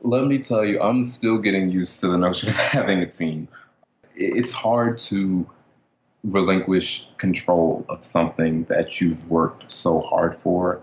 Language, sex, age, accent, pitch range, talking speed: English, male, 20-39, American, 85-95 Hz, 155 wpm